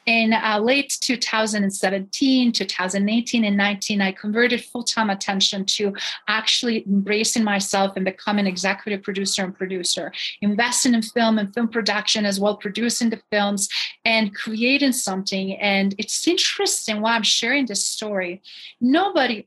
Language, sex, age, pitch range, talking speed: English, female, 30-49, 200-235 Hz, 140 wpm